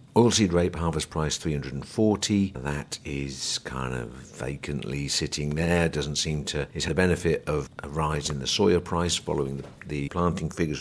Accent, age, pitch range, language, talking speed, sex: British, 50-69, 70-90 Hz, English, 165 wpm, male